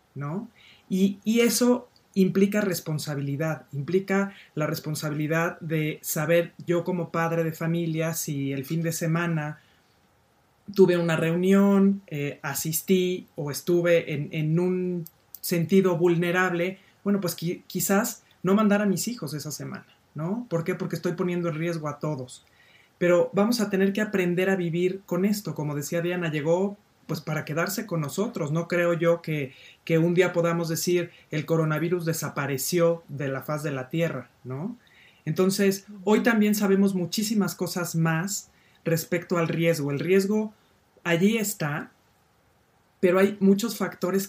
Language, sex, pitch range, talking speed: Spanish, male, 160-190 Hz, 150 wpm